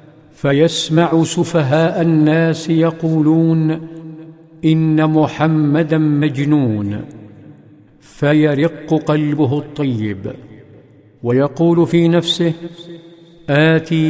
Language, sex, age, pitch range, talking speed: Arabic, male, 50-69, 145-155 Hz, 60 wpm